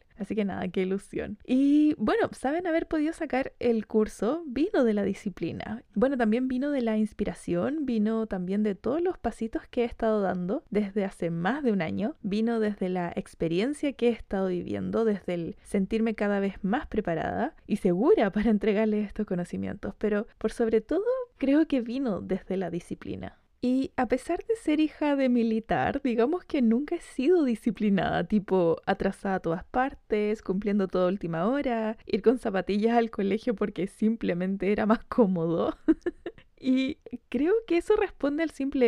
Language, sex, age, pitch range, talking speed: Spanish, female, 20-39, 205-270 Hz, 170 wpm